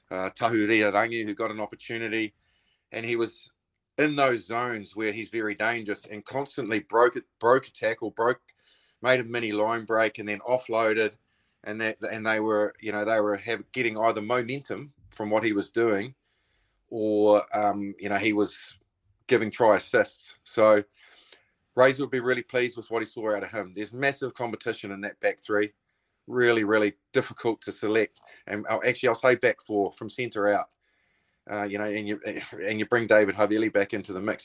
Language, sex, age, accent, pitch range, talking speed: English, male, 30-49, Australian, 105-115 Hz, 190 wpm